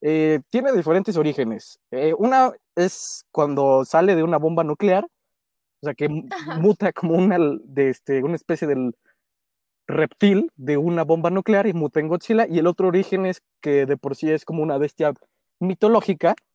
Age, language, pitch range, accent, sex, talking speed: 20-39, Spanish, 150-210 Hz, Mexican, male, 165 wpm